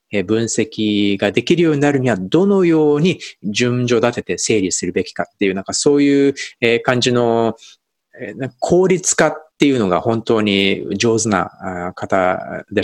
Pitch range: 105-170 Hz